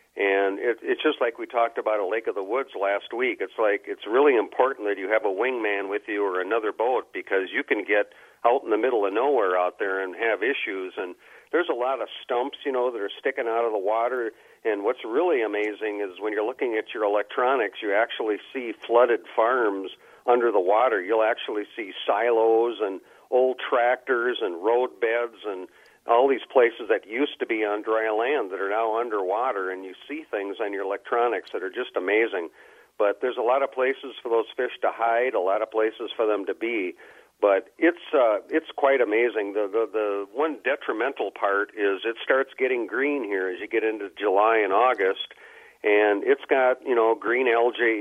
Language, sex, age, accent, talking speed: English, male, 50-69, American, 205 wpm